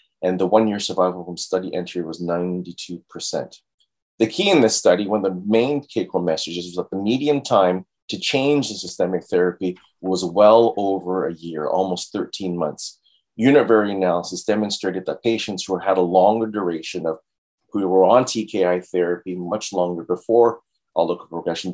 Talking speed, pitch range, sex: 165 wpm, 85-100 Hz, male